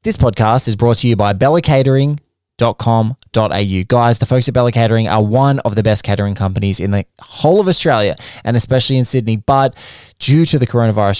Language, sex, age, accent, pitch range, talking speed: English, male, 20-39, Australian, 100-125 Hz, 190 wpm